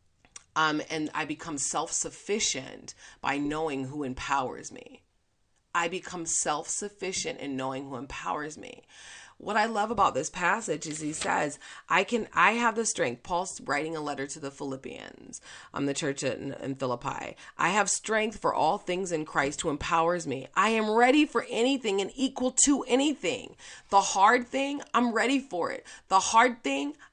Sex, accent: female, American